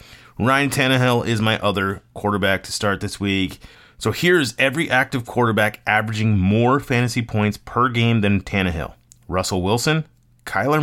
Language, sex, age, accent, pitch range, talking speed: English, male, 30-49, American, 100-125 Hz, 145 wpm